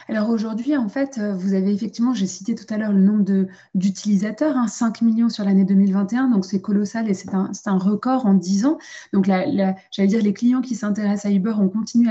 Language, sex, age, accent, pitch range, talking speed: French, female, 20-39, French, 195-230 Hz, 235 wpm